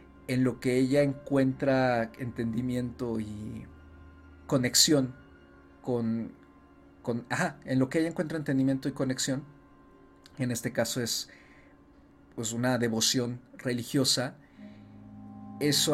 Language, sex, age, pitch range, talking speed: Spanish, male, 40-59, 110-135 Hz, 105 wpm